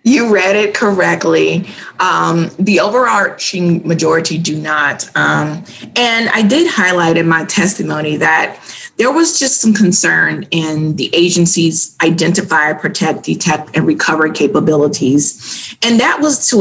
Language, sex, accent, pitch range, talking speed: English, female, American, 160-195 Hz, 135 wpm